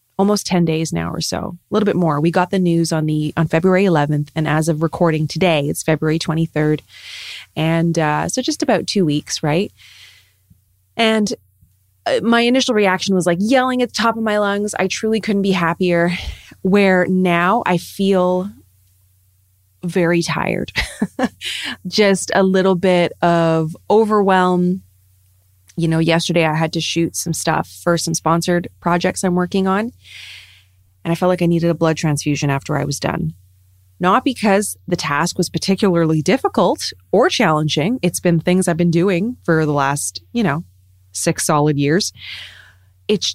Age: 20-39